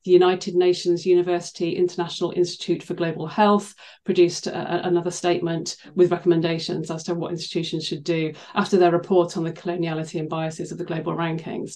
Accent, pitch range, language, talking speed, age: British, 175-215 Hz, English, 165 wpm, 40-59